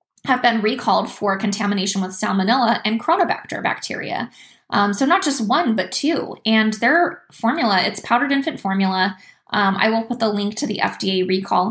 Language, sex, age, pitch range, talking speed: English, female, 20-39, 195-230 Hz, 175 wpm